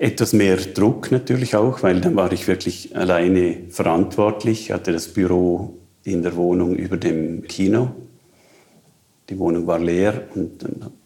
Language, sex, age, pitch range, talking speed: German, male, 50-69, 85-95 Hz, 150 wpm